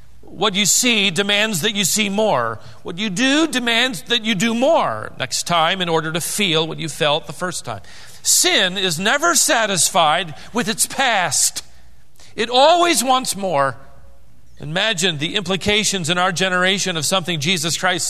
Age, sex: 40-59, male